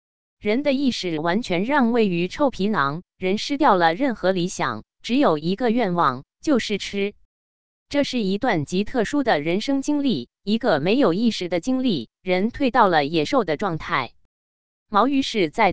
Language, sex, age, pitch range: Chinese, female, 20-39, 170-260 Hz